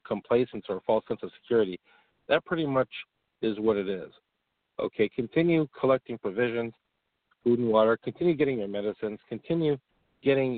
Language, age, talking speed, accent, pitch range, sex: English, 50-69, 145 wpm, American, 100-125 Hz, male